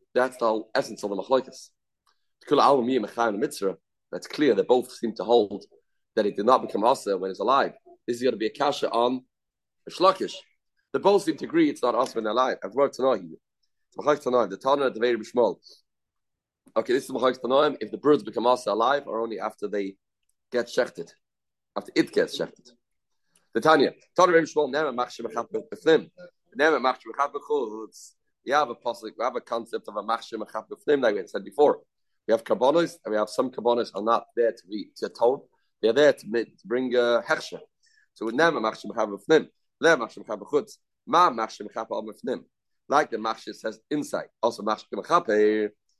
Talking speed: 170 wpm